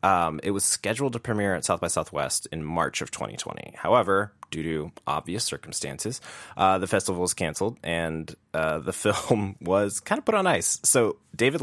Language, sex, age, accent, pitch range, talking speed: English, male, 20-39, American, 80-100 Hz, 185 wpm